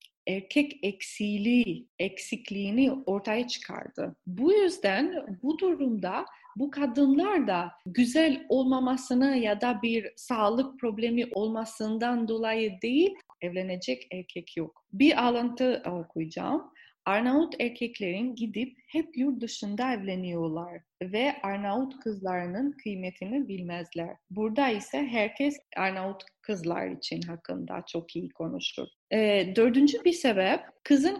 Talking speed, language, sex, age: 105 wpm, Turkish, female, 30-49